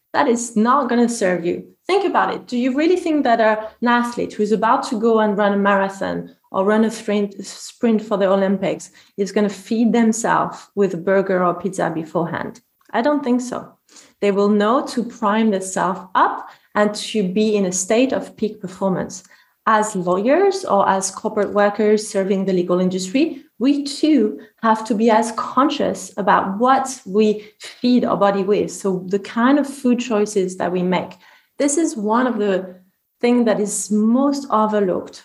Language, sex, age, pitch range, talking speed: English, female, 30-49, 195-240 Hz, 180 wpm